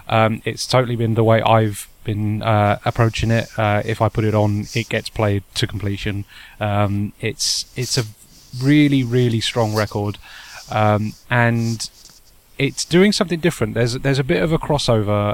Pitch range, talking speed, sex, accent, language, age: 105-125 Hz, 170 wpm, male, British, English, 20-39